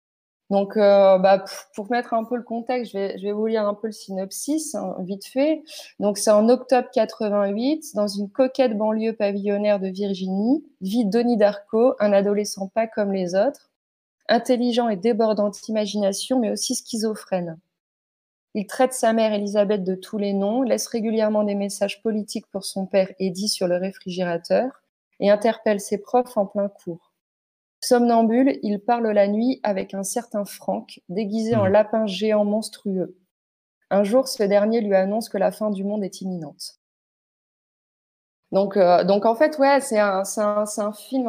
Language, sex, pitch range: French, female, 195-225 Hz